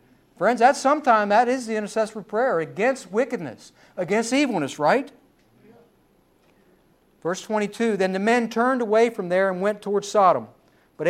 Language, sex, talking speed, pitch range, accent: English, male, 150 wpm, 185-240 Hz, American